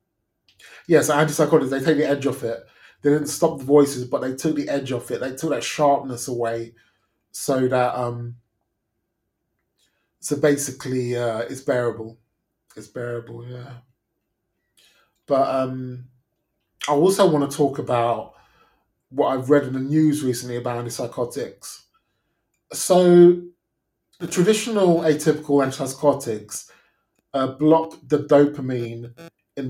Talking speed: 130 wpm